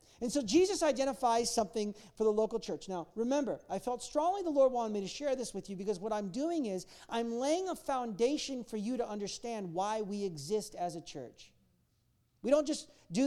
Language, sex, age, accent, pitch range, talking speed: English, male, 40-59, American, 190-250 Hz, 210 wpm